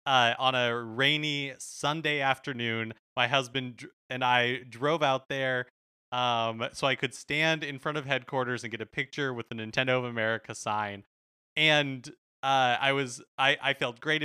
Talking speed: 170 wpm